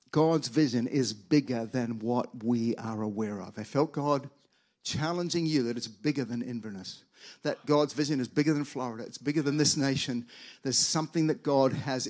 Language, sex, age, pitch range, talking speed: English, male, 50-69, 145-195 Hz, 185 wpm